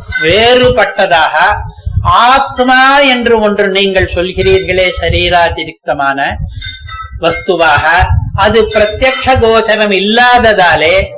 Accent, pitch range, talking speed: native, 155-225 Hz, 70 wpm